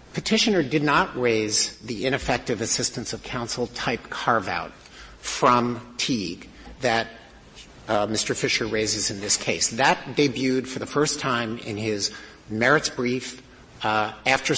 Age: 50-69